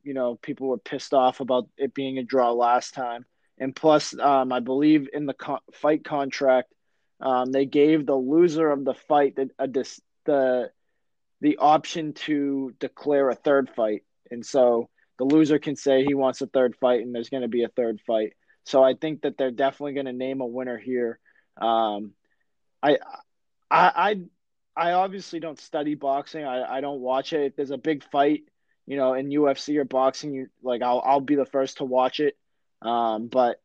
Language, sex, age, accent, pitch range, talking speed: English, male, 20-39, American, 130-155 Hz, 195 wpm